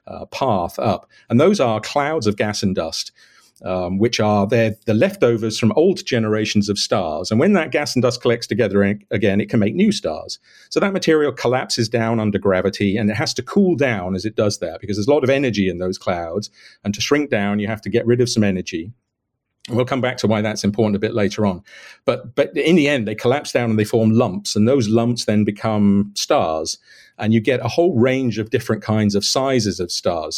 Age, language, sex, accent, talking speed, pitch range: 50-69, English, male, British, 235 wpm, 100-125 Hz